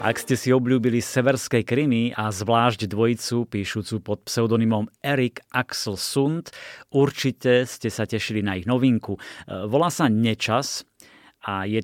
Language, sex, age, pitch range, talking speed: Slovak, male, 30-49, 105-130 Hz, 135 wpm